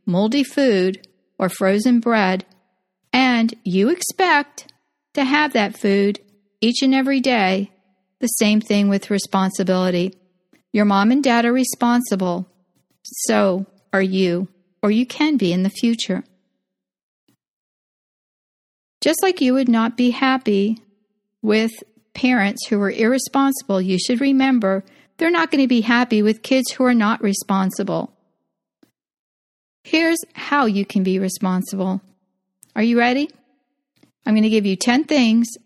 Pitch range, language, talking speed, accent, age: 190-255 Hz, English, 135 wpm, American, 50-69